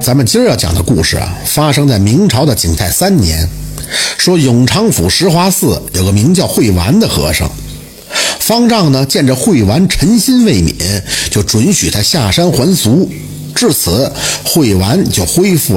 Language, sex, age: Chinese, male, 50-69